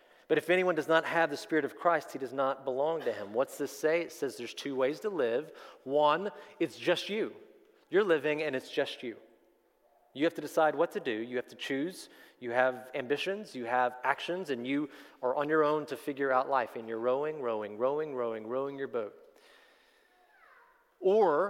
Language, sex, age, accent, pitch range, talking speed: English, male, 30-49, American, 135-180 Hz, 205 wpm